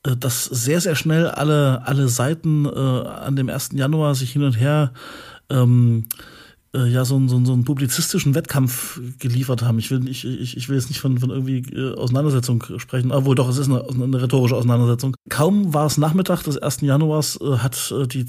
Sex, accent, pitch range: male, German, 130-150 Hz